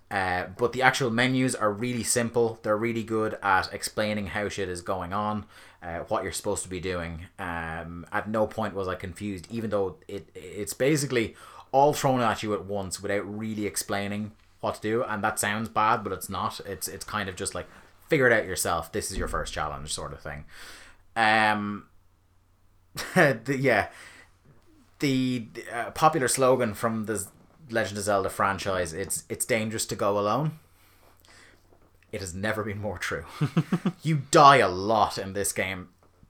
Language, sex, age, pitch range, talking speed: English, male, 30-49, 100-125 Hz, 175 wpm